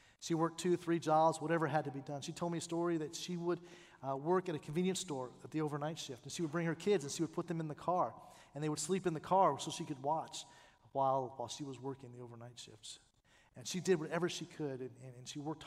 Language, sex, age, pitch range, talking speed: English, male, 40-59, 130-160 Hz, 275 wpm